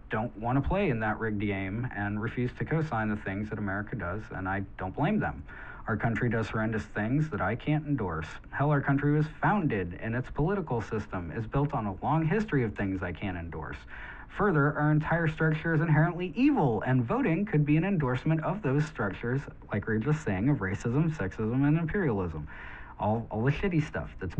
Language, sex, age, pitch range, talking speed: English, male, 40-59, 105-150 Hz, 200 wpm